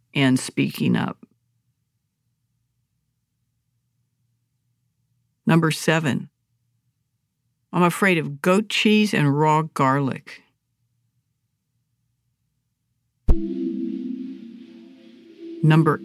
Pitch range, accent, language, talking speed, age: 125-175 Hz, American, English, 50 wpm, 60-79